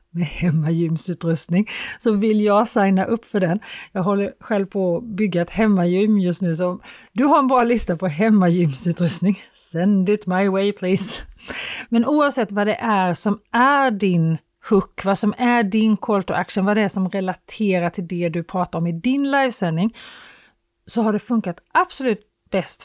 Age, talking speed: 30-49, 175 wpm